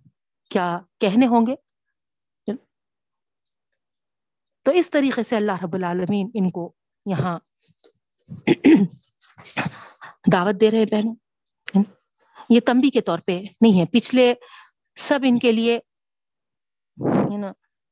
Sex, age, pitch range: female, 50-69, 190-245 Hz